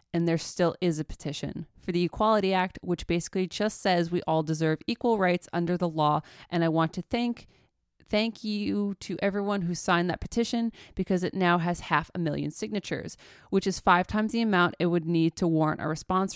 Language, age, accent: English, 20-39, American